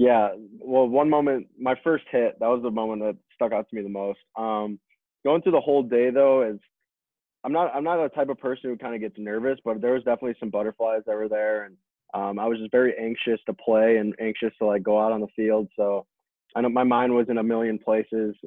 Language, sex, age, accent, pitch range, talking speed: English, male, 20-39, American, 105-120 Hz, 245 wpm